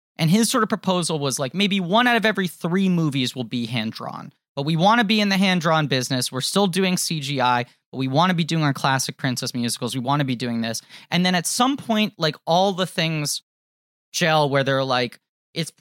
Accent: American